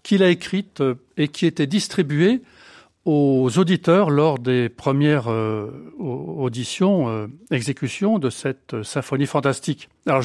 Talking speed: 110 wpm